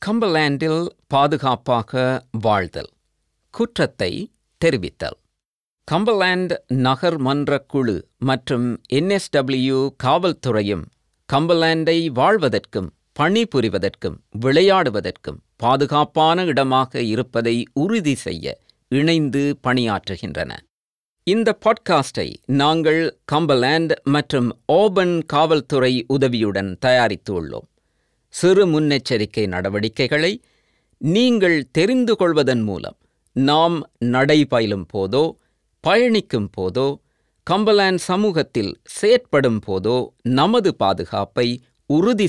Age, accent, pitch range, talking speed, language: 50-69, native, 125-170 Hz, 70 wpm, Tamil